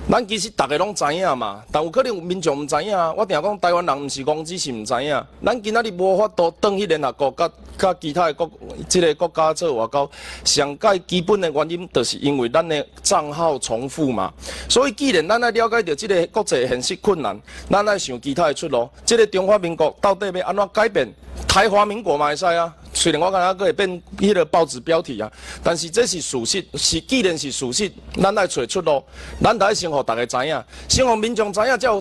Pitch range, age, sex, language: 155-210 Hz, 30-49, male, Chinese